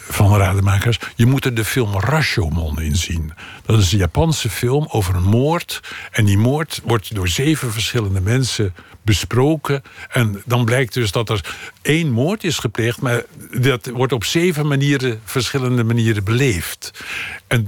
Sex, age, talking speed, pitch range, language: male, 60-79, 160 wpm, 100-125 Hz, Dutch